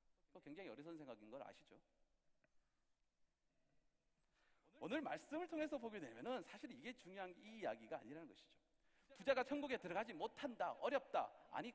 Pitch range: 235-305 Hz